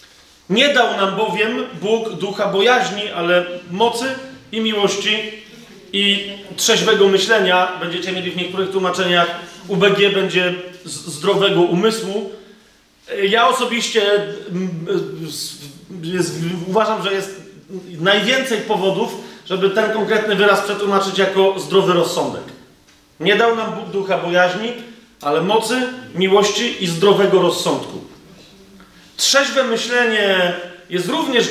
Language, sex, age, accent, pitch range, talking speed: Polish, male, 30-49, native, 185-225 Hz, 105 wpm